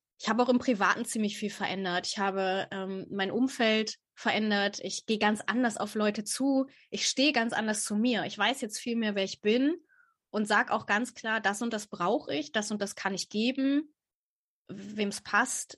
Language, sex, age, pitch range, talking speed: German, female, 20-39, 195-240 Hz, 205 wpm